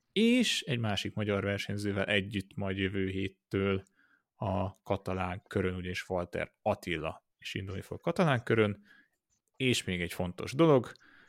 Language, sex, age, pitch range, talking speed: Hungarian, male, 30-49, 95-115 Hz, 135 wpm